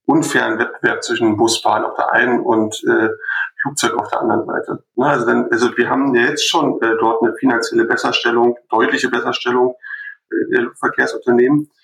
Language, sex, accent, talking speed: German, male, German, 160 wpm